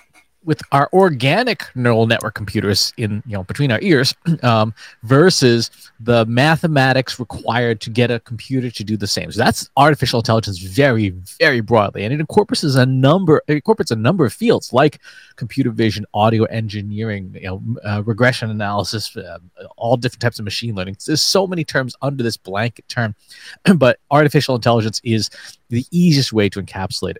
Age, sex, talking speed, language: 30-49, male, 170 wpm, English